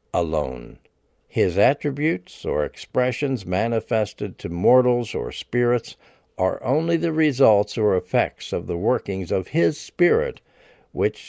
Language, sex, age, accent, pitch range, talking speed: English, male, 60-79, American, 95-130 Hz, 120 wpm